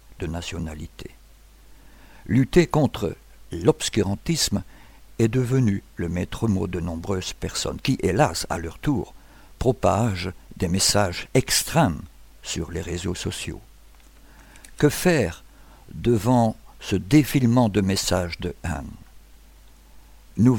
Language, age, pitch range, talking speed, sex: French, 60-79, 90-125 Hz, 105 wpm, male